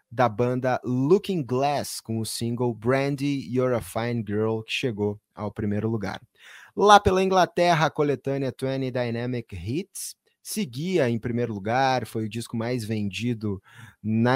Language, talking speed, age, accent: Portuguese, 145 wpm, 20-39, Brazilian